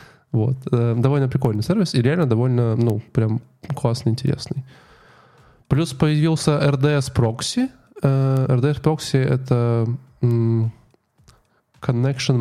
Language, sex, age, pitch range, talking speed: Russian, male, 10-29, 115-135 Hz, 80 wpm